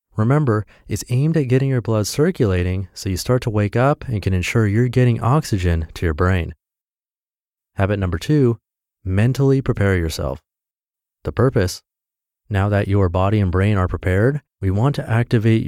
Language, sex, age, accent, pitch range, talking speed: English, male, 30-49, American, 95-120 Hz, 165 wpm